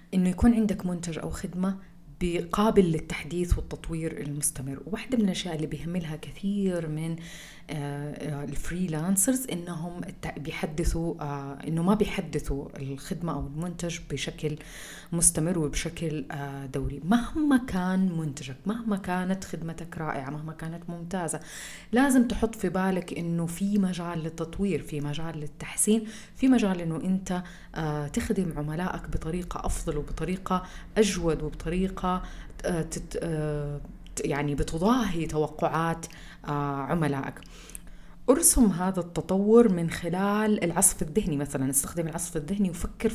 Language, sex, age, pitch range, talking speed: Arabic, female, 30-49, 150-190 Hz, 120 wpm